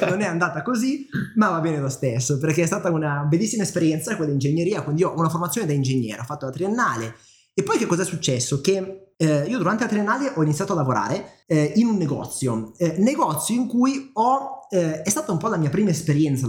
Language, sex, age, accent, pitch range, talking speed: Italian, male, 20-39, native, 145-190 Hz, 225 wpm